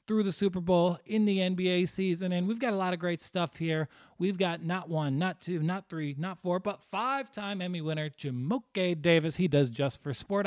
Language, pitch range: English, 155-195 Hz